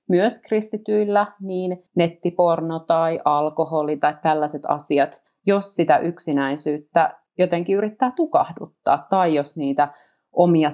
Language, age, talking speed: Finnish, 30-49, 105 wpm